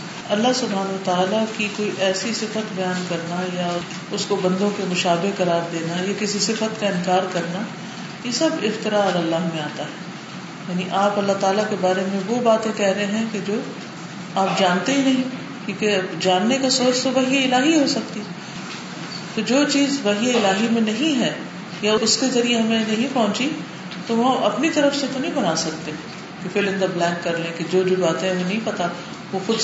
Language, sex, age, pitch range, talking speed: Urdu, female, 40-59, 180-220 Hz, 190 wpm